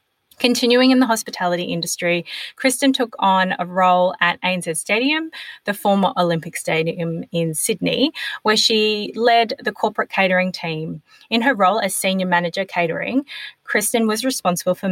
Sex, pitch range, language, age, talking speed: female, 175-240 Hz, English, 20-39, 150 wpm